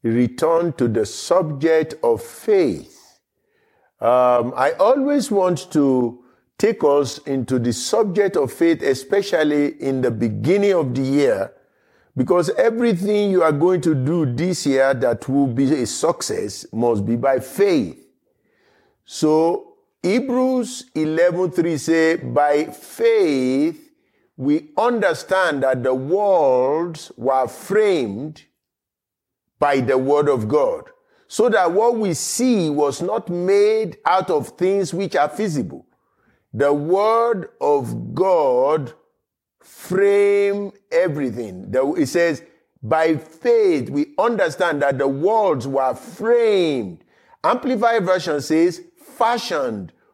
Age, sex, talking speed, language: 50-69, male, 115 wpm, English